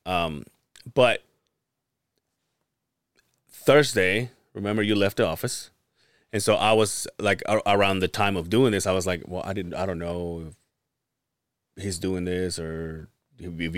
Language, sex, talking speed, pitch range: English, male, 155 wpm, 90-120 Hz